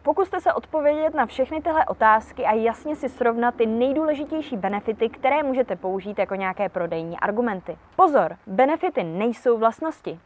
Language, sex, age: Czech, female, 20-39